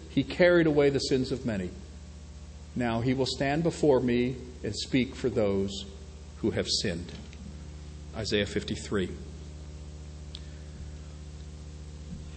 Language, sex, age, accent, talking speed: English, male, 50-69, American, 105 wpm